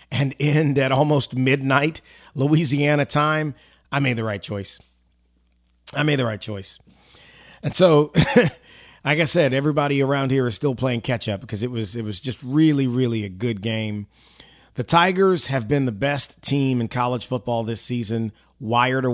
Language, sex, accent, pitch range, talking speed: English, male, American, 110-140 Hz, 170 wpm